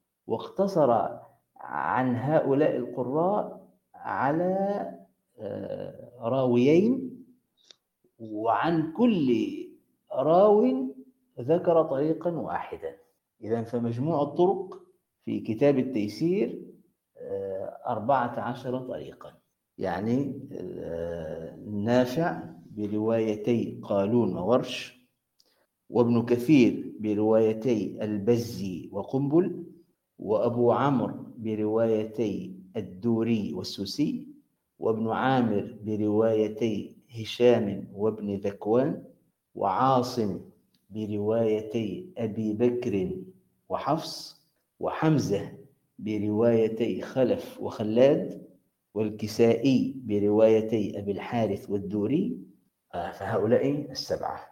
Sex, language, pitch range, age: male, Arabic, 110-165 Hz, 50-69